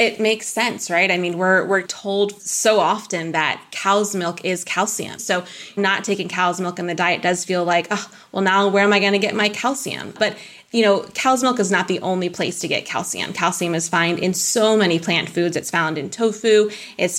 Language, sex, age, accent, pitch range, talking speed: English, female, 20-39, American, 175-205 Hz, 225 wpm